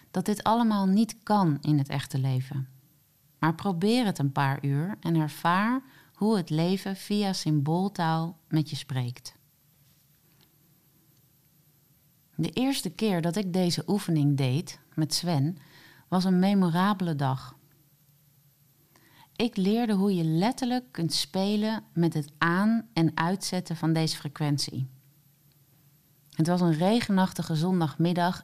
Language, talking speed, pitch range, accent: Dutch, 125 wpm, 145-185 Hz, Dutch